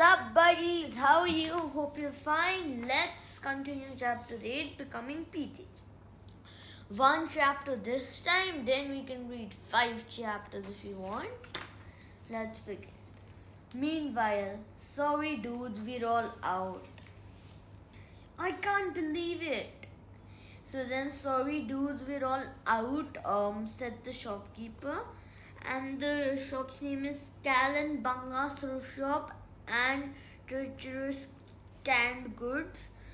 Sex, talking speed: female, 115 wpm